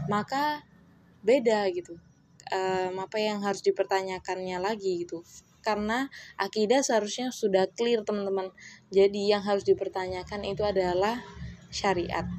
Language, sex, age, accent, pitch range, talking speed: Indonesian, female, 20-39, native, 180-220 Hz, 110 wpm